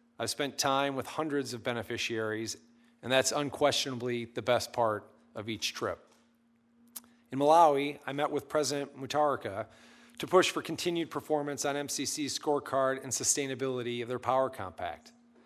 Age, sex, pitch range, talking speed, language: 40-59, male, 120-150 Hz, 145 wpm, English